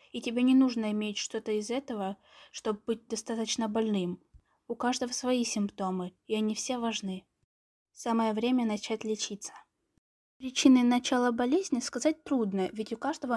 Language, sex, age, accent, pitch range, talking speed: Ukrainian, female, 10-29, native, 215-265 Hz, 145 wpm